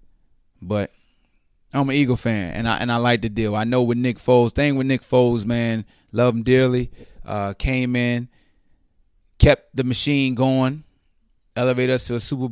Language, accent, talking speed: English, American, 175 wpm